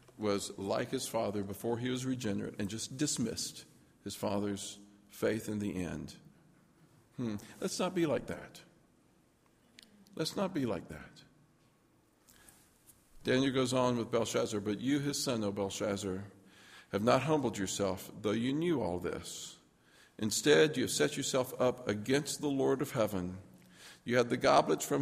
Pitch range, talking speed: 100-140 Hz, 155 wpm